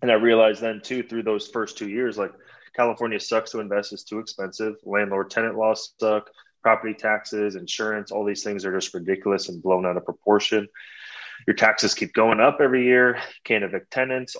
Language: English